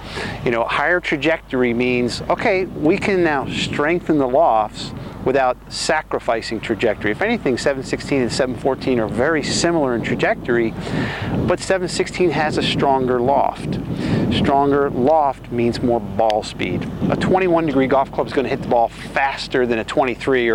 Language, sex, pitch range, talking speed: English, male, 125-160 Hz, 150 wpm